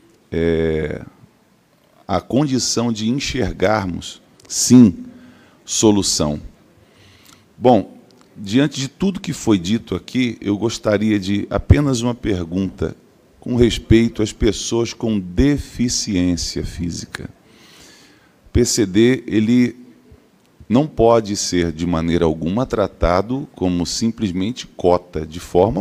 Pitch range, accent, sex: 85-115 Hz, Brazilian, male